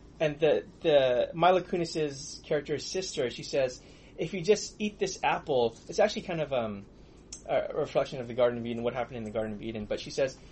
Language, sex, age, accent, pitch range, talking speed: English, male, 20-39, American, 140-195 Hz, 210 wpm